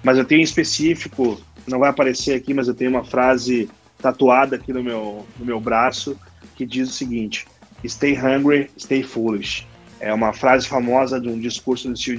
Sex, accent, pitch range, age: male, Brazilian, 120-135 Hz, 20-39